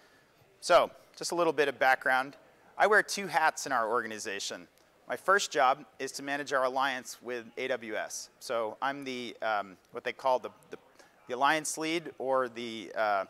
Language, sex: English, male